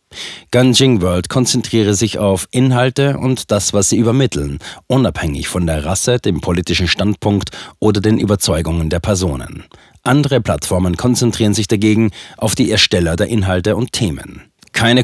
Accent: German